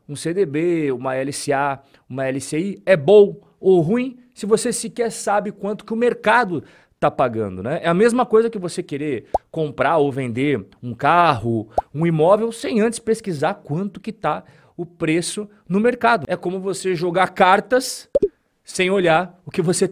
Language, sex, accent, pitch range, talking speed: Portuguese, male, Brazilian, 155-205 Hz, 165 wpm